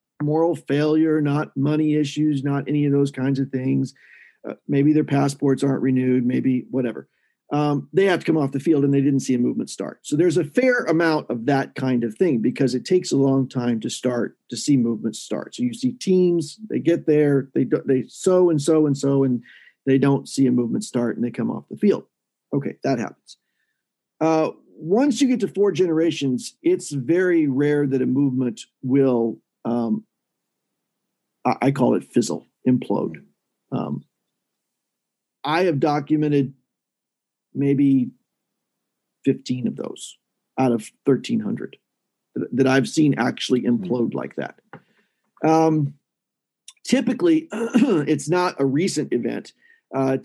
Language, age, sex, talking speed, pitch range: English, 40-59, male, 160 wpm, 135-165 Hz